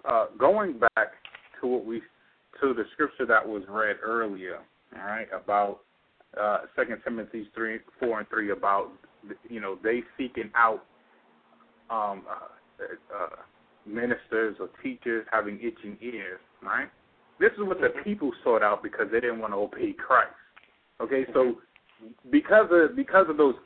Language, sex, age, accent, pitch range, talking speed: English, male, 30-49, American, 115-180 Hz, 150 wpm